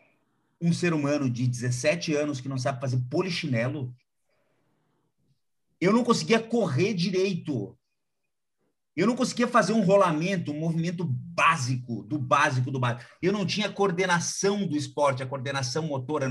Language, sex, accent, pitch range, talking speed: Portuguese, male, Brazilian, 130-185 Hz, 145 wpm